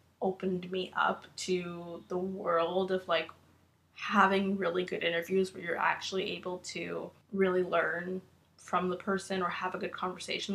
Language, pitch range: English, 175-195 Hz